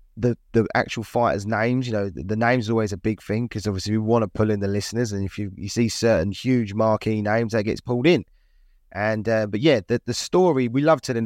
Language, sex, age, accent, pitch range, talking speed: English, male, 20-39, British, 100-130 Hz, 250 wpm